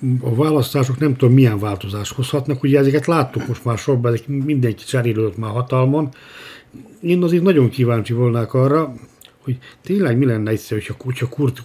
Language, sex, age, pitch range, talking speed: Hungarian, male, 60-79, 110-135 Hz, 160 wpm